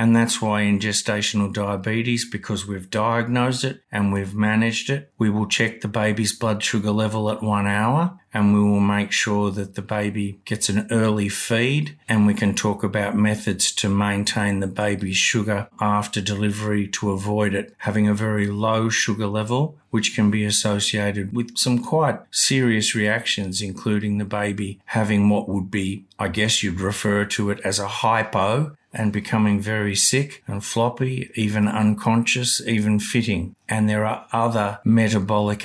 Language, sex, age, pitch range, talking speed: English, male, 50-69, 105-115 Hz, 165 wpm